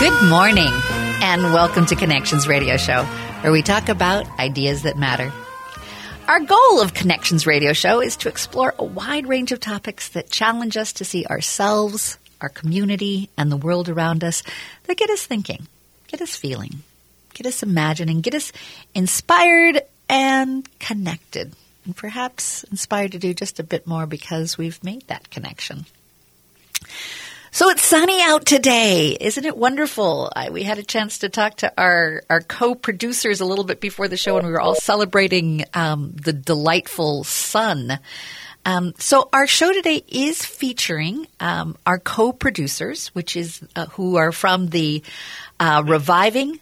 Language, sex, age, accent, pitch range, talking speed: English, female, 50-69, American, 160-225 Hz, 160 wpm